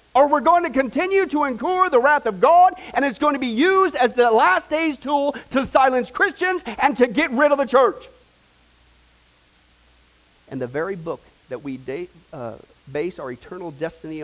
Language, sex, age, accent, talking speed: English, male, 40-59, American, 185 wpm